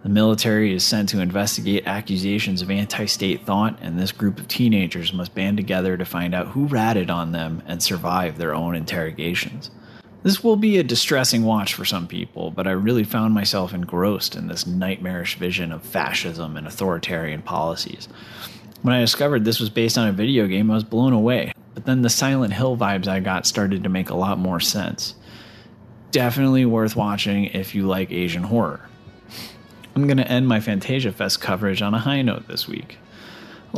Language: English